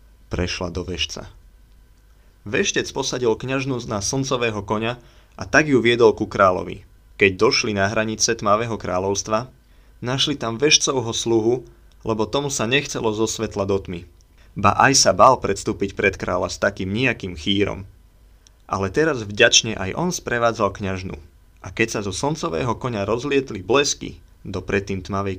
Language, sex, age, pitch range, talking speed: Slovak, male, 30-49, 95-120 Hz, 145 wpm